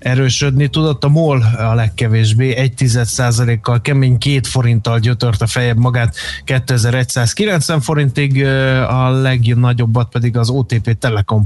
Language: Hungarian